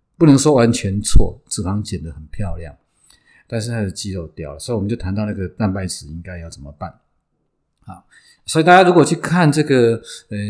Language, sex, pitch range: Chinese, male, 90-135 Hz